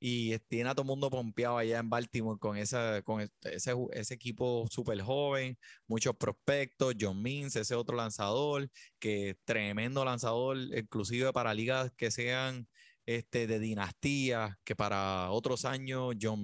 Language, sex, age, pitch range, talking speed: Spanish, male, 20-39, 110-135 Hz, 150 wpm